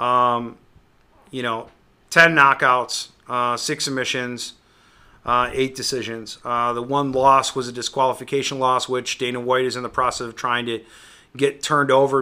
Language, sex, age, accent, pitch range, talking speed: English, male, 30-49, American, 125-145 Hz, 155 wpm